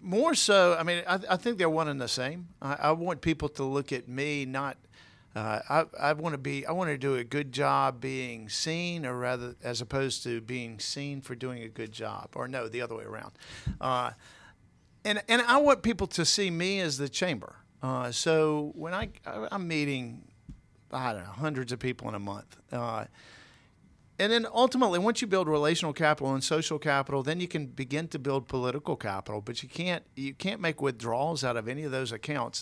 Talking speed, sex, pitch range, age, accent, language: 220 wpm, male, 120-155 Hz, 50-69, American, English